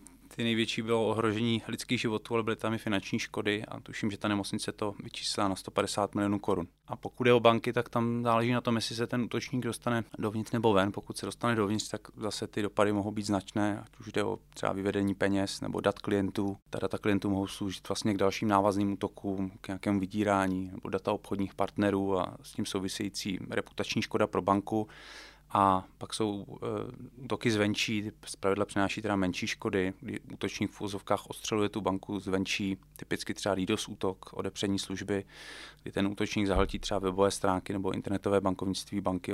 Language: Czech